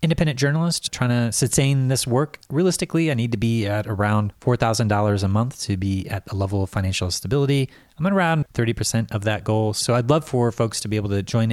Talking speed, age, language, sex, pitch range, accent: 220 wpm, 30-49, English, male, 100-130 Hz, American